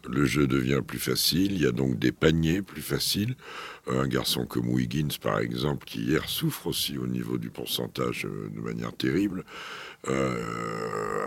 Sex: male